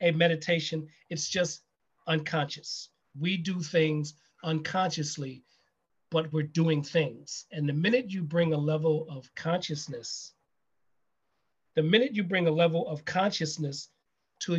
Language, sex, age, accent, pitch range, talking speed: English, male, 40-59, American, 155-180 Hz, 130 wpm